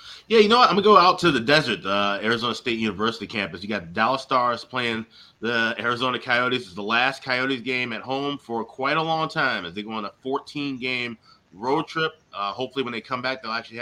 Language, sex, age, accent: English, male, 20-39, American